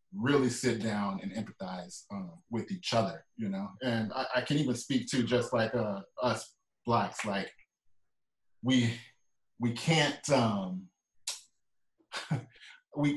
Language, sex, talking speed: English, male, 130 wpm